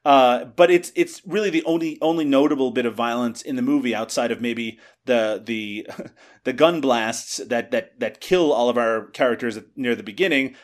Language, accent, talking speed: English, American, 190 wpm